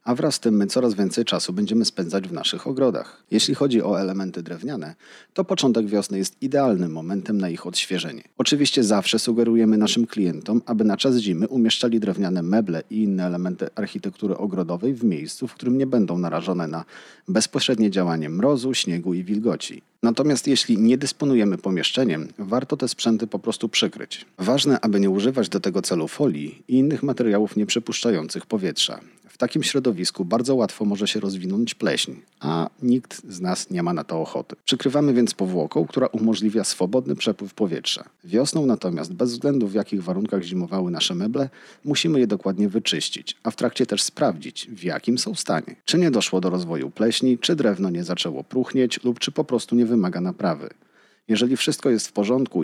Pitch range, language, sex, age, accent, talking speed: 95-130 Hz, Polish, male, 40-59, native, 175 wpm